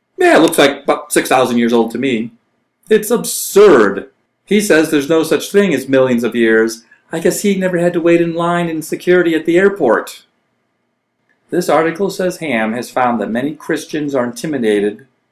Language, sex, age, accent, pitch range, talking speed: English, male, 40-59, American, 120-175 Hz, 185 wpm